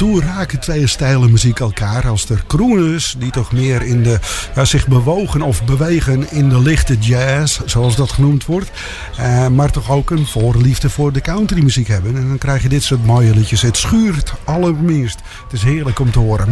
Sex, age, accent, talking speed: male, 50-69, Dutch, 195 wpm